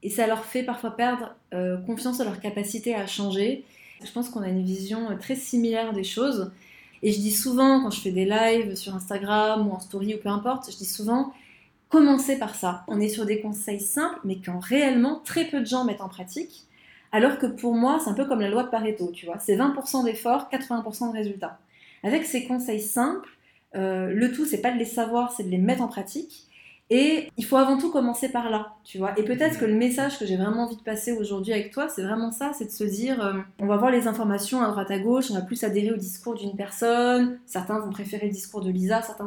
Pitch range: 205-255 Hz